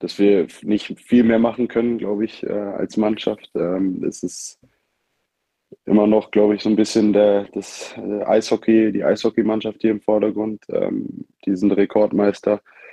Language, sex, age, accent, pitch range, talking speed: German, male, 20-39, German, 100-110 Hz, 130 wpm